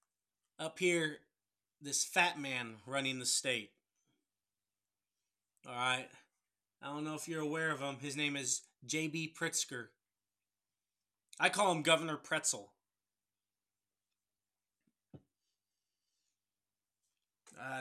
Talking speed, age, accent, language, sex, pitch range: 95 wpm, 30-49, American, English, male, 100-165 Hz